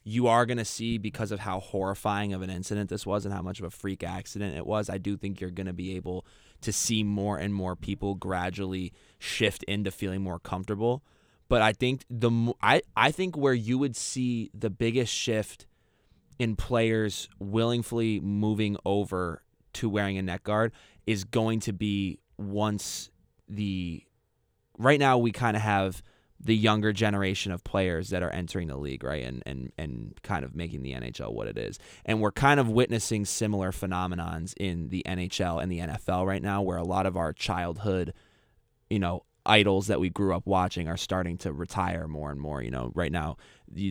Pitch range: 90-110 Hz